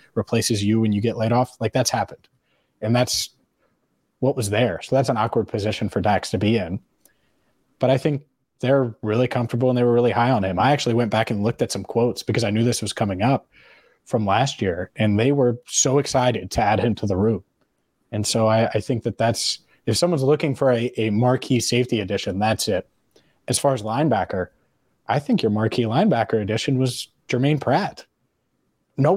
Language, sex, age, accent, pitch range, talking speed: English, male, 20-39, American, 110-135 Hz, 205 wpm